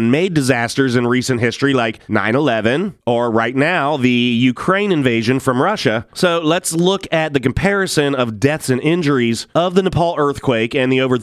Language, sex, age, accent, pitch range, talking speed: English, male, 30-49, American, 125-160 Hz, 170 wpm